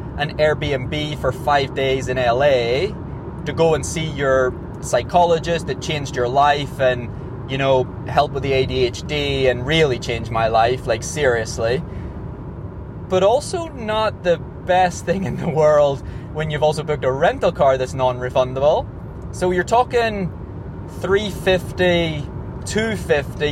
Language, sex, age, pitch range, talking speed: English, male, 20-39, 130-160 Hz, 140 wpm